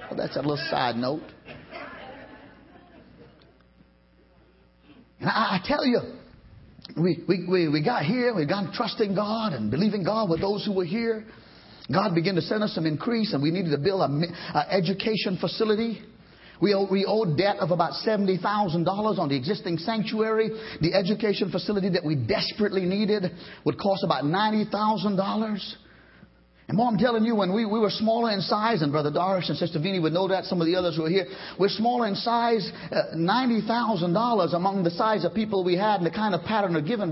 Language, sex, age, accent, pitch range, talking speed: English, male, 50-69, American, 180-230 Hz, 185 wpm